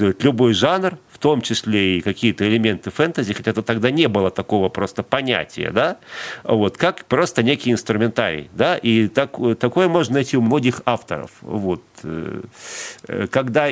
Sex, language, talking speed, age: male, Russian, 145 wpm, 40-59